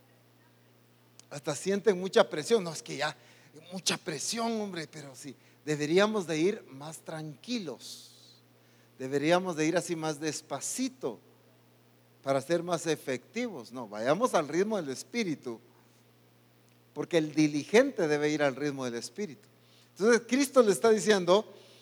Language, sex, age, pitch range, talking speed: English, male, 40-59, 120-195 Hz, 130 wpm